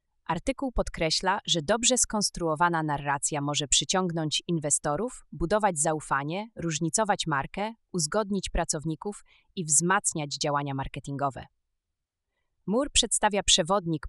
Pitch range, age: 150-195 Hz, 30-49